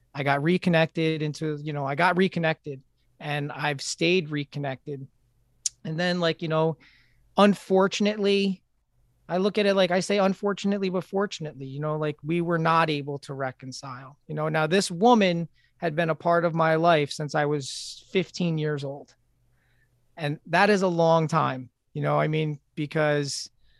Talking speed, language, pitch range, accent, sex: 170 wpm, English, 135-165 Hz, American, male